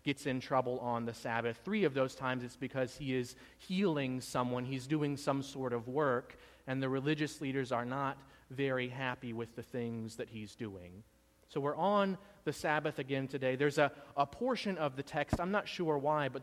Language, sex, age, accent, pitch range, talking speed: English, male, 30-49, American, 120-145 Hz, 200 wpm